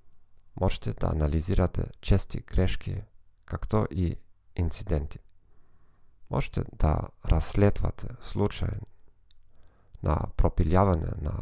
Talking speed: 80 wpm